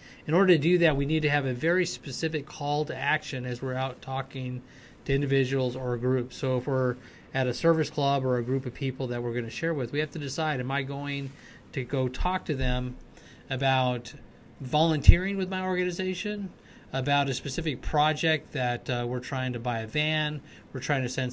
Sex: male